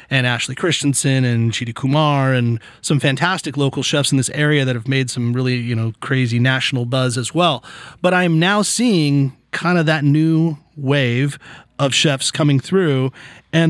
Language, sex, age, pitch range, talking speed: English, male, 30-49, 130-155 Hz, 175 wpm